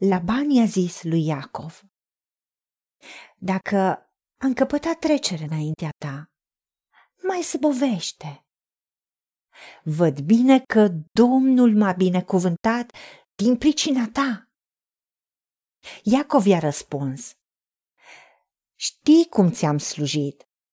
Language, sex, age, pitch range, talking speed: Romanian, female, 40-59, 175-260 Hz, 90 wpm